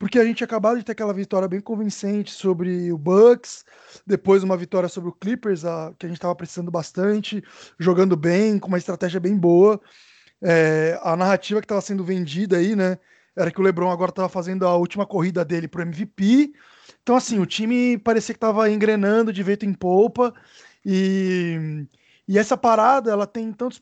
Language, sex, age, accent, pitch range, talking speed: Portuguese, male, 20-39, Brazilian, 175-215 Hz, 185 wpm